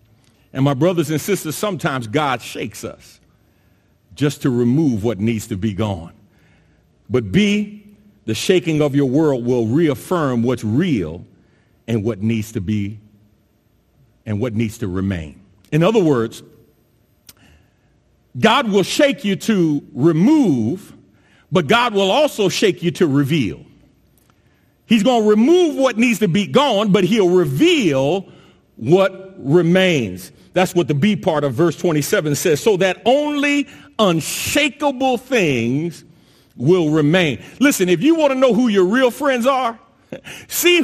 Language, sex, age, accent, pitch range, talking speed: English, male, 50-69, American, 145-225 Hz, 145 wpm